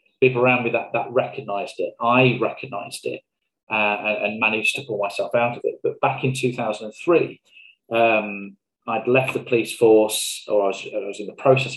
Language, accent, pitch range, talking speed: English, British, 105-135 Hz, 205 wpm